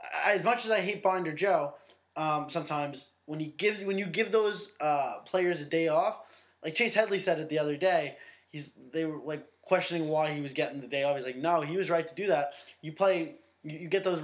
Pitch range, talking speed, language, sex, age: 150-195 Hz, 230 wpm, English, male, 20-39